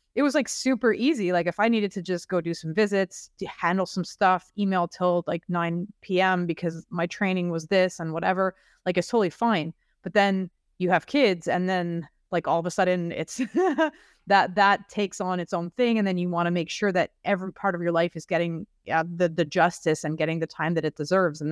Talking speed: 230 wpm